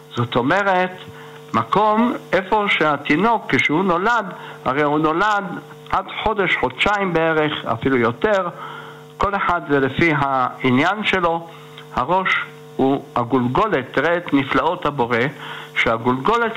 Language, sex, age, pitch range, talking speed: Hebrew, male, 60-79, 145-195 Hz, 110 wpm